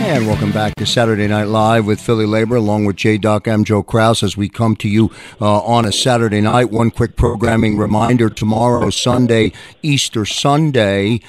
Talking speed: 180 wpm